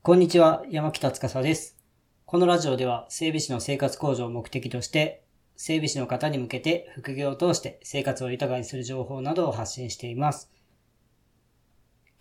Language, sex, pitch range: Japanese, female, 130-160 Hz